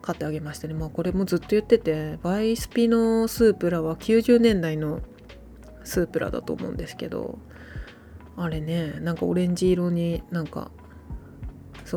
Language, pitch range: Japanese, 160-220 Hz